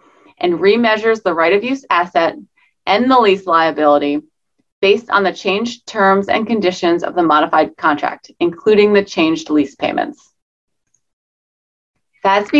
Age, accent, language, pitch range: 30-49, American, English, 185-255 Hz